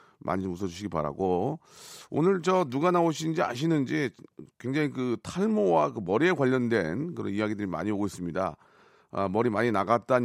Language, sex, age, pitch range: Korean, male, 40-59, 115-160 Hz